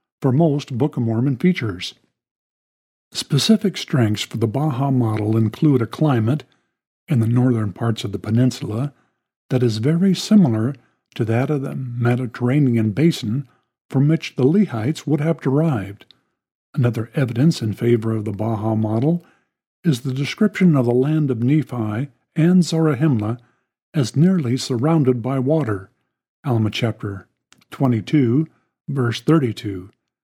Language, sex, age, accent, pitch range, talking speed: English, male, 50-69, American, 115-150 Hz, 135 wpm